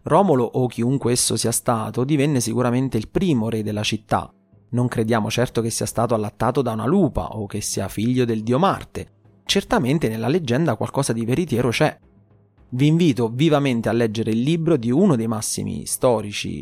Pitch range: 110-145 Hz